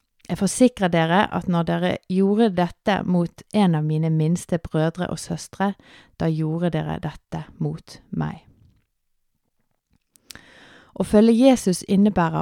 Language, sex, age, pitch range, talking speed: English, female, 30-49, 165-200 Hz, 130 wpm